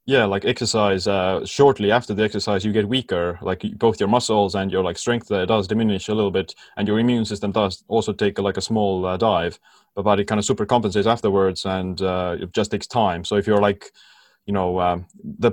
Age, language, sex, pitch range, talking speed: 20-39, English, male, 95-110 Hz, 225 wpm